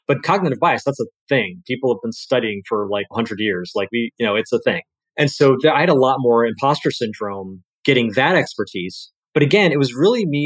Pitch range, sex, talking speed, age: 115-145 Hz, male, 225 wpm, 30-49